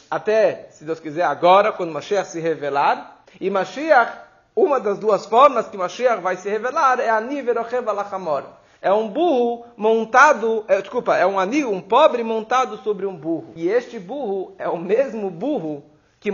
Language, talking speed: Portuguese, 175 wpm